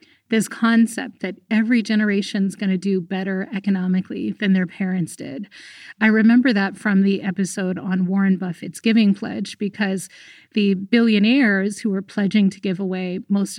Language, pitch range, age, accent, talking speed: English, 190-220 Hz, 30-49, American, 160 wpm